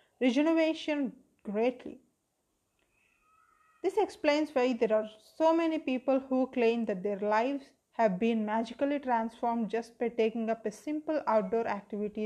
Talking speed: 130 wpm